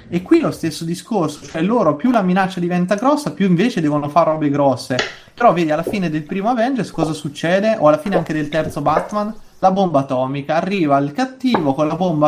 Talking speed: 210 wpm